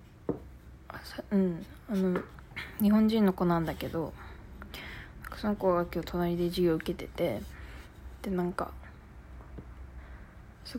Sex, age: female, 20-39